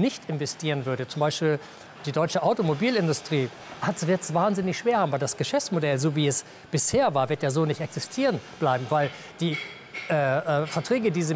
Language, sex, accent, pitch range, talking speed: German, male, German, 150-195 Hz, 185 wpm